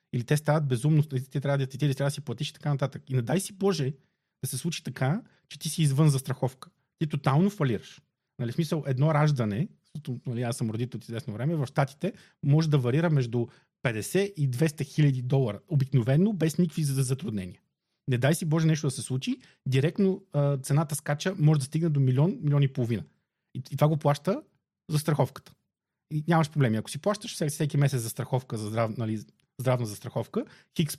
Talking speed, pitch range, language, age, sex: 195 wpm, 130-160 Hz, Bulgarian, 30-49, male